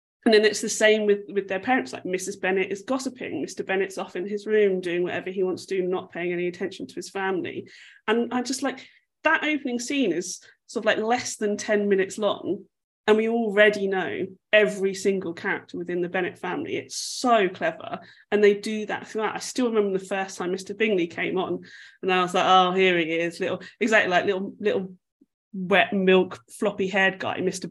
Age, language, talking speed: 20-39, English, 210 wpm